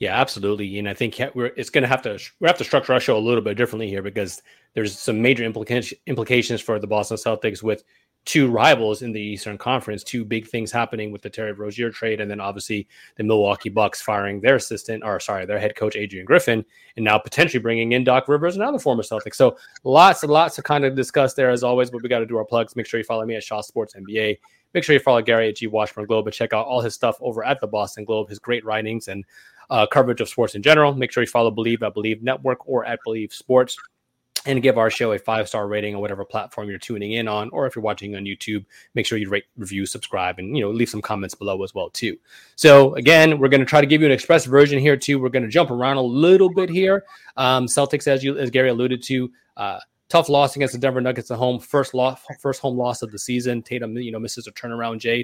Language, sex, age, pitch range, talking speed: English, male, 30-49, 105-130 Hz, 255 wpm